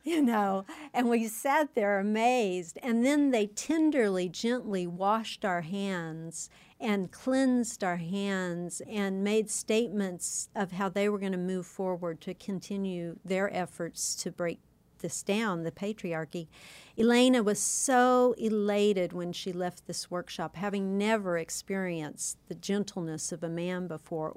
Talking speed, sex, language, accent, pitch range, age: 145 wpm, female, English, American, 175-210 Hz, 50-69